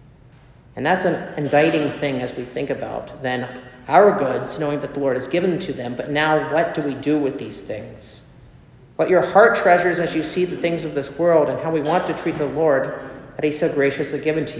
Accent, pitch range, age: American, 140-180 Hz, 50-69